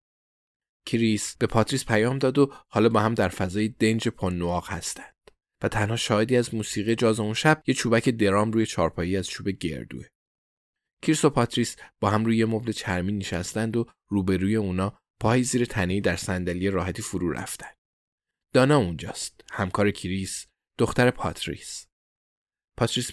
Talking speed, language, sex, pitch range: 150 wpm, Persian, male, 95-120 Hz